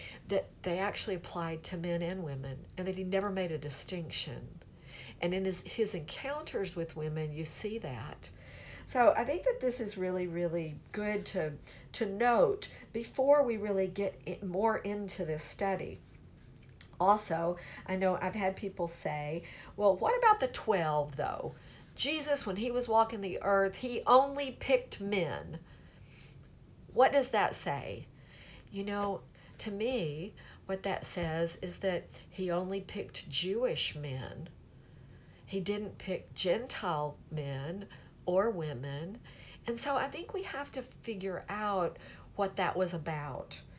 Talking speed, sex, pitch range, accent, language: 145 wpm, female, 165-210 Hz, American, English